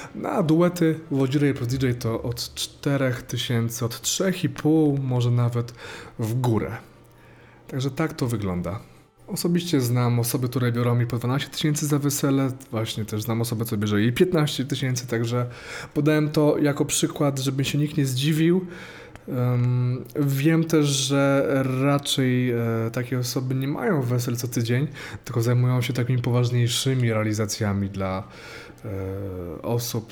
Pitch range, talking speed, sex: 115-145 Hz, 135 wpm, male